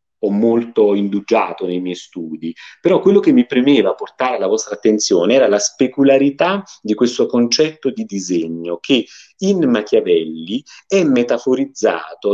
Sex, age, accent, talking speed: male, 40-59, native, 135 wpm